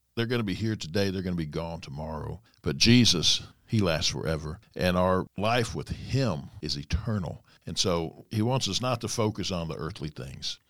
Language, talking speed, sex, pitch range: English, 200 wpm, male, 90-115 Hz